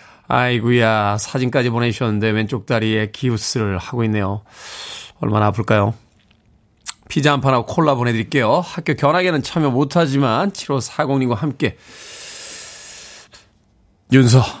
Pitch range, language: 115-175 Hz, Korean